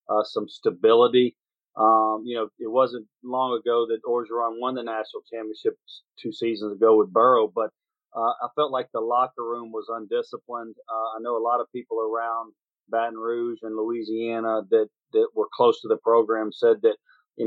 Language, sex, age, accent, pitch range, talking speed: English, male, 40-59, American, 110-130 Hz, 180 wpm